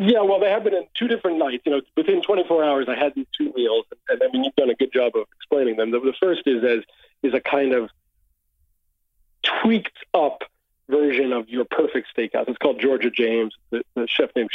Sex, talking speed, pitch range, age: male, 225 wpm, 120-160 Hz, 40-59